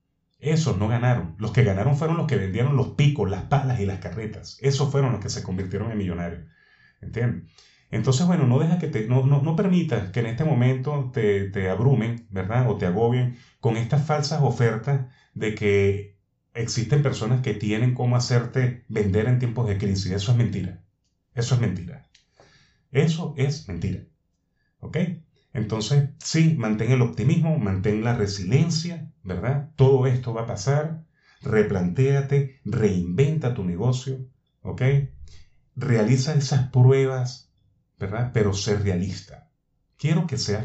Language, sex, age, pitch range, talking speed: Spanish, male, 30-49, 105-140 Hz, 150 wpm